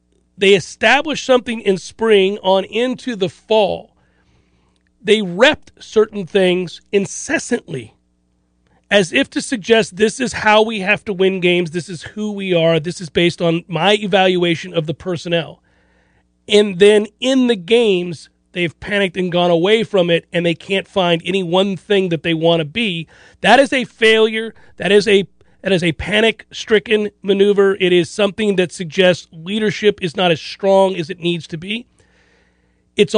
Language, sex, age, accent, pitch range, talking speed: English, male, 40-59, American, 165-215 Hz, 165 wpm